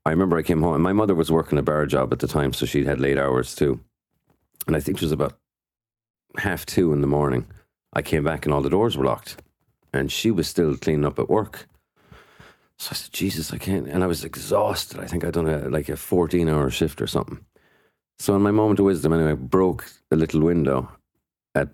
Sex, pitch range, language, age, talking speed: male, 75-90 Hz, English, 40-59, 230 wpm